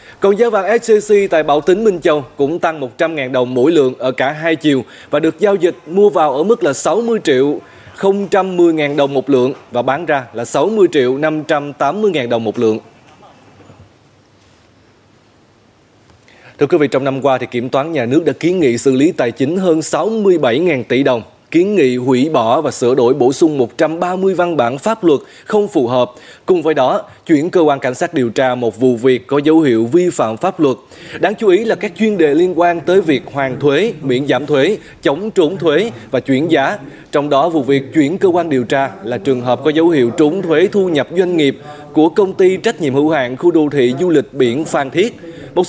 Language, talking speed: Vietnamese, 205 wpm